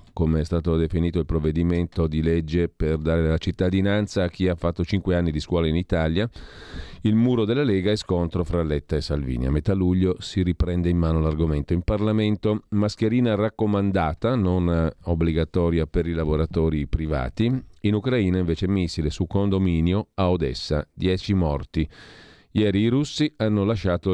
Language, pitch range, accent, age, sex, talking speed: Italian, 80-100 Hz, native, 40-59, male, 160 wpm